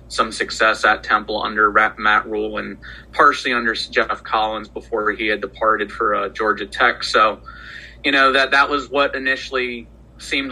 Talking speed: 165 wpm